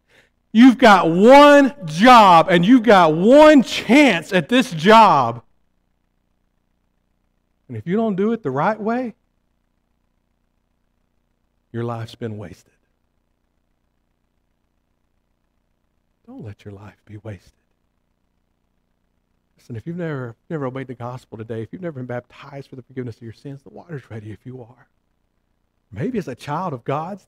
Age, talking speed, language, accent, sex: 50-69, 140 wpm, English, American, male